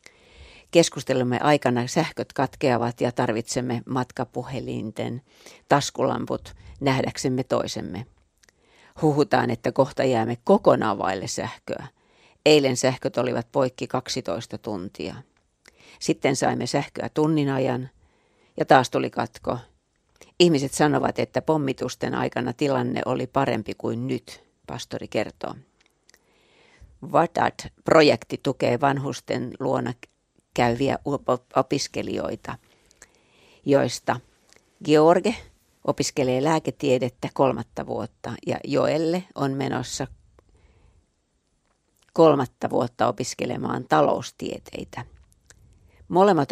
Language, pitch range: Finnish, 125-150 Hz